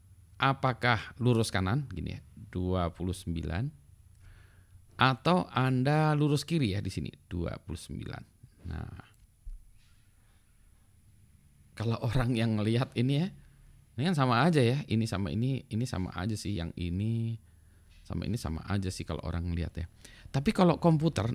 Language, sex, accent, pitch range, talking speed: Indonesian, male, native, 90-115 Hz, 130 wpm